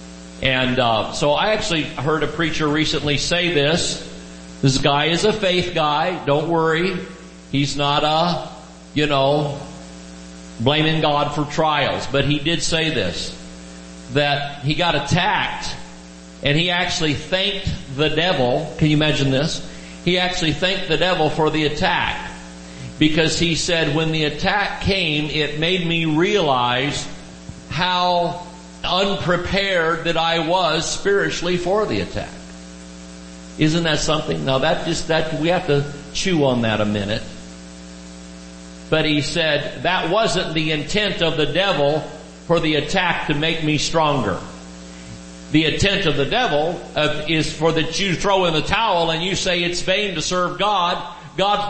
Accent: American